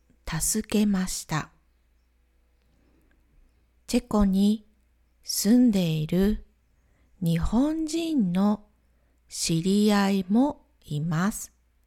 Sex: female